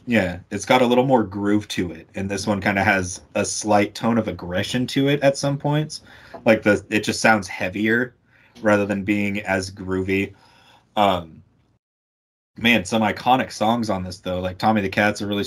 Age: 20-39